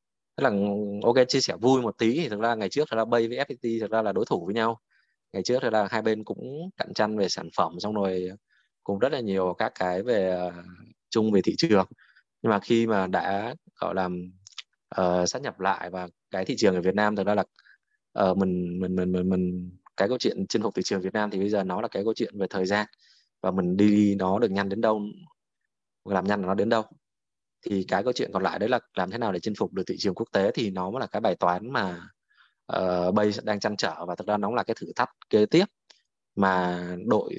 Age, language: 20-39, Vietnamese